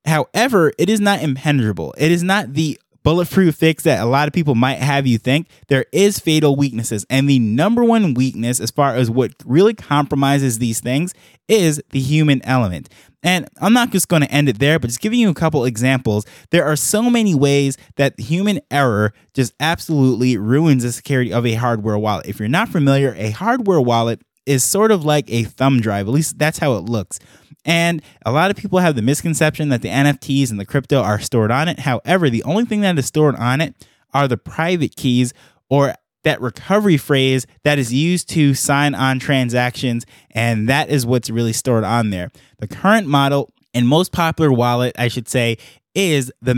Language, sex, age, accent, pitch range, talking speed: English, male, 20-39, American, 120-155 Hz, 200 wpm